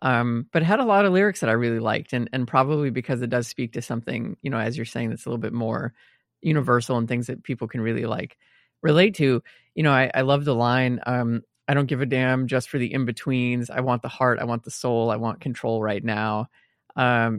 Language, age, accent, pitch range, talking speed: English, 20-39, American, 115-135 Hz, 250 wpm